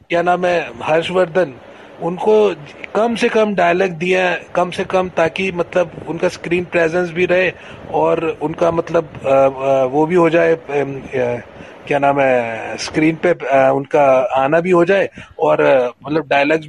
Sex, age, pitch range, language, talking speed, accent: male, 30-49, 165-205 Hz, Hindi, 145 wpm, native